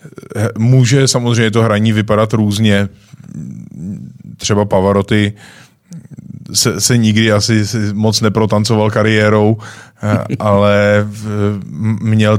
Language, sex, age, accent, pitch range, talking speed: Czech, male, 20-39, native, 105-110 Hz, 80 wpm